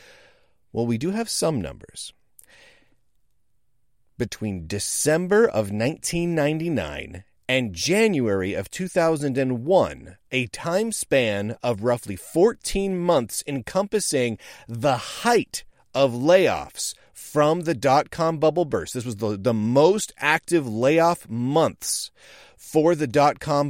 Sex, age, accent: male, 40-59, American